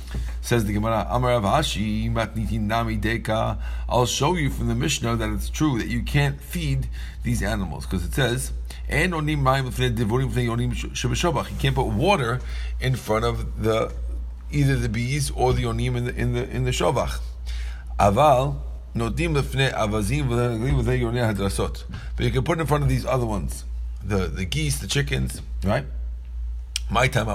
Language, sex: English, male